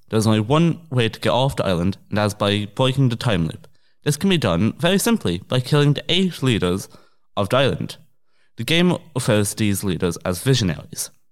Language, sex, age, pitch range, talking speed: English, male, 20-39, 100-145 Hz, 210 wpm